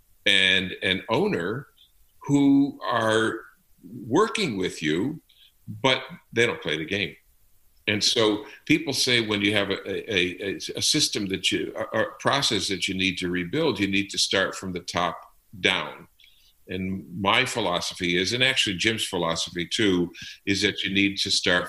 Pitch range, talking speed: 90-130 Hz, 165 wpm